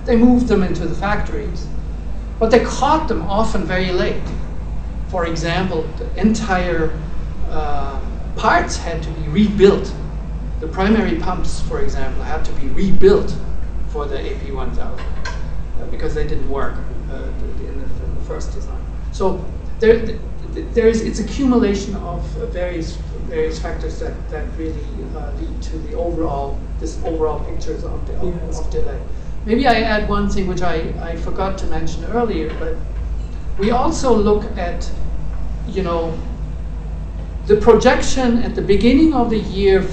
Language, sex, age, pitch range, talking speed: French, male, 60-79, 150-215 Hz, 150 wpm